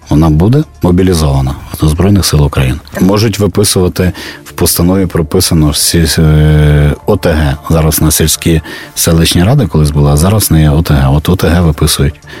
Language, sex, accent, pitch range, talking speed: Ukrainian, male, native, 75-100 Hz, 135 wpm